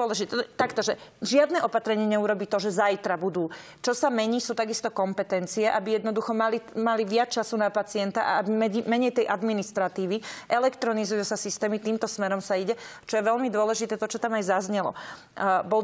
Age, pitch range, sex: 30-49, 210-245 Hz, female